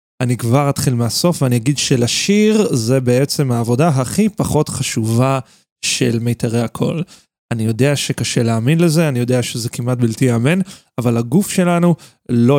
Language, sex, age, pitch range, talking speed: Hebrew, male, 30-49, 120-150 Hz, 150 wpm